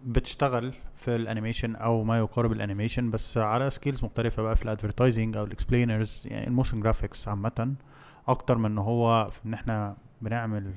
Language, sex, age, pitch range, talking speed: English, male, 20-39, 110-125 Hz, 150 wpm